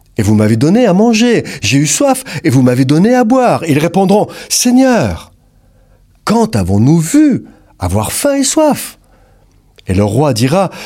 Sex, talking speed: male, 160 wpm